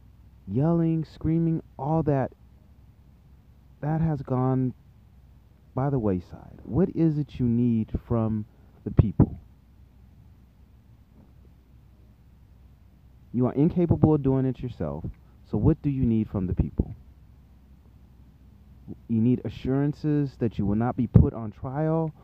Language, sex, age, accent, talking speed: English, male, 30-49, American, 120 wpm